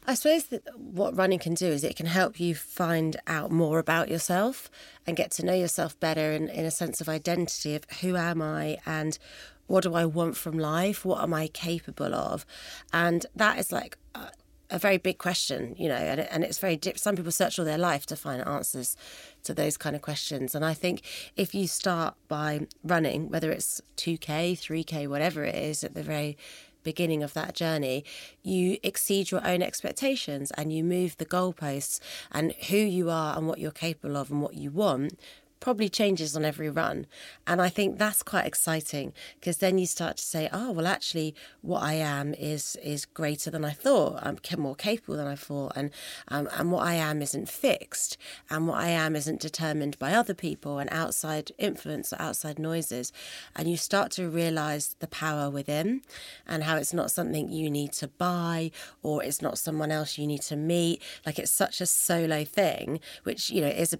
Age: 30-49